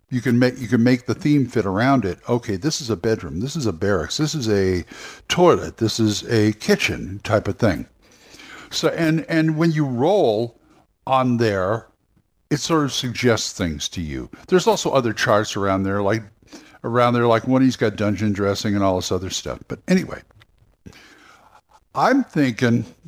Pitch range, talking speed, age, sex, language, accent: 100-135 Hz, 180 wpm, 60-79, male, English, American